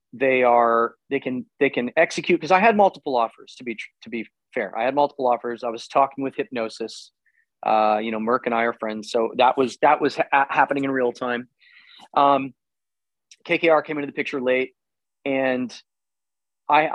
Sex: male